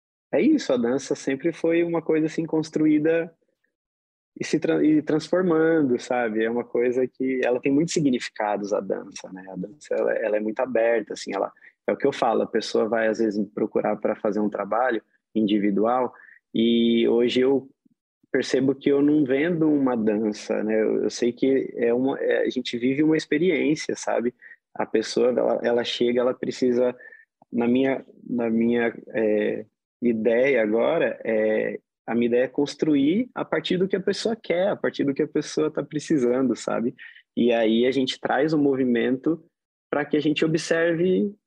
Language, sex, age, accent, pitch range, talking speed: Portuguese, male, 20-39, Brazilian, 120-160 Hz, 180 wpm